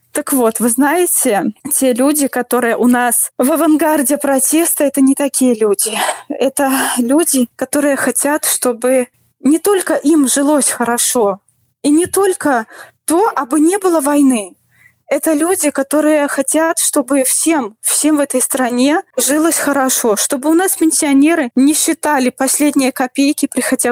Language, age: Russian, 20-39